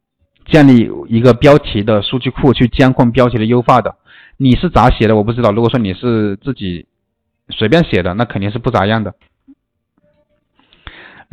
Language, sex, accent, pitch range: Chinese, male, native, 110-145 Hz